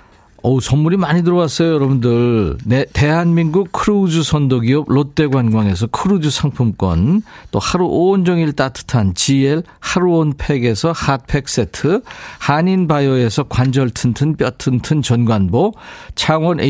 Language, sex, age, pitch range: Korean, male, 50-69, 120-160 Hz